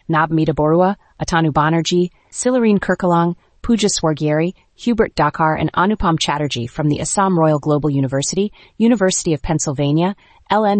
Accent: American